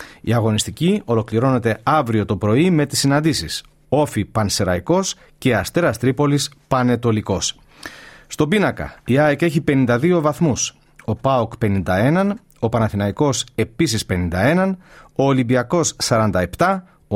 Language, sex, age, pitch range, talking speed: Greek, male, 40-59, 110-160 Hz, 110 wpm